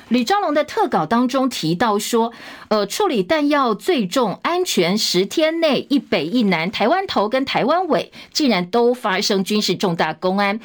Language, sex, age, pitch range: Chinese, female, 50-69, 195-265 Hz